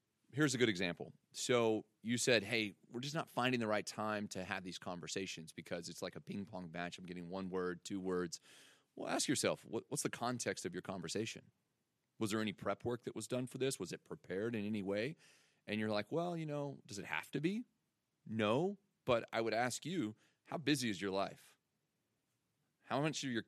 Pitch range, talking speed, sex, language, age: 95-130 Hz, 210 wpm, male, English, 30-49